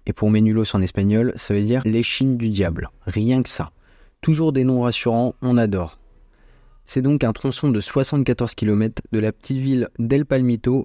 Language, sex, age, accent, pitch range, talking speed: French, male, 20-39, French, 105-125 Hz, 185 wpm